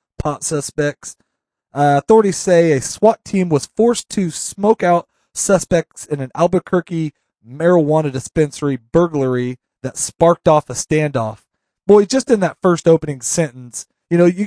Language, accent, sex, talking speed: English, American, male, 145 wpm